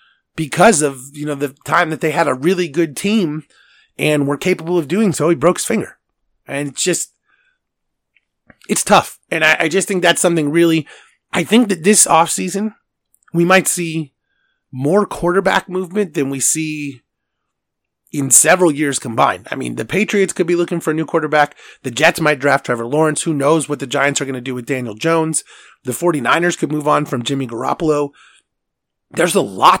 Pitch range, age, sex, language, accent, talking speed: 140-180 Hz, 30-49, male, English, American, 190 wpm